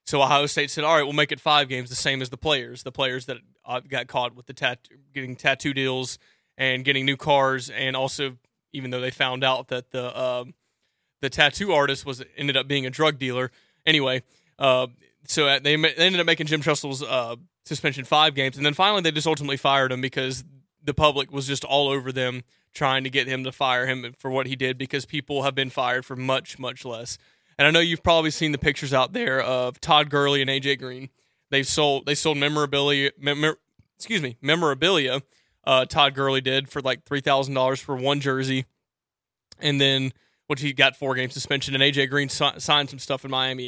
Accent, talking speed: American, 215 wpm